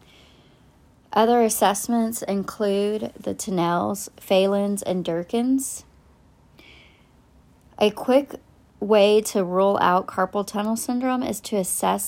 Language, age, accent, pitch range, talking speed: English, 40-59, American, 175-215 Hz, 100 wpm